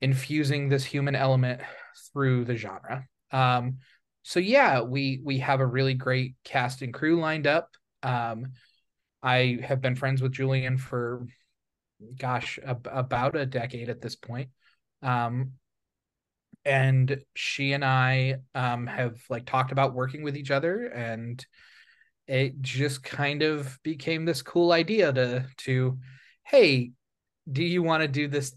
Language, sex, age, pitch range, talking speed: English, male, 20-39, 130-150 Hz, 145 wpm